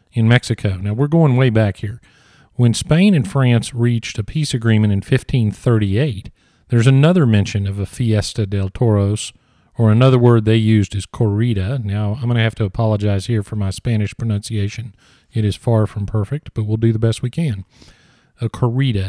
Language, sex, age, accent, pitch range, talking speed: English, male, 40-59, American, 105-125 Hz, 185 wpm